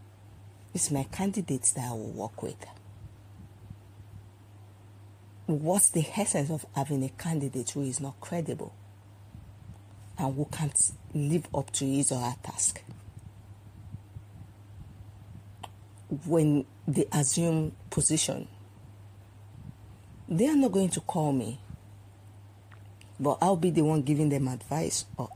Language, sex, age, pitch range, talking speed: English, female, 50-69, 100-145 Hz, 115 wpm